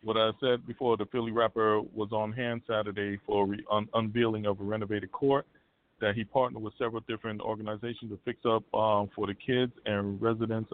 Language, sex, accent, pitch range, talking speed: English, male, American, 95-110 Hz, 190 wpm